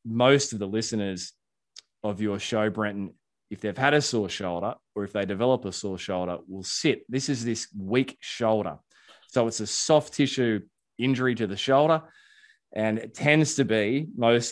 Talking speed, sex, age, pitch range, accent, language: 180 wpm, male, 20-39, 95-120 Hz, Australian, English